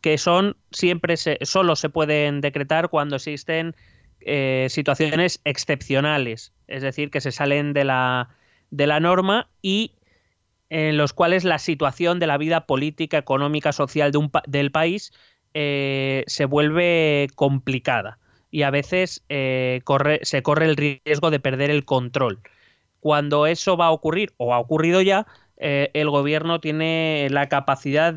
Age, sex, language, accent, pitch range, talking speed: 20-39, male, Spanish, Spanish, 140-160 Hz, 150 wpm